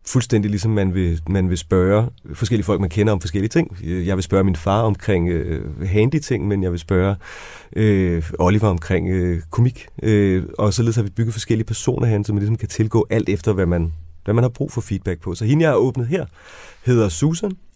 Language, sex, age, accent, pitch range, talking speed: Danish, male, 30-49, native, 95-120 Hz, 215 wpm